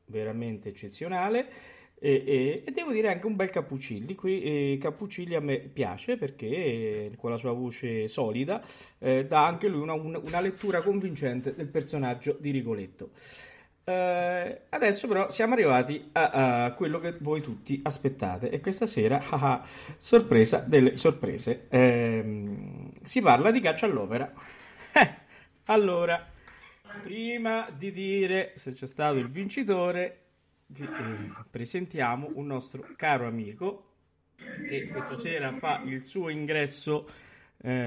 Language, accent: Italian, native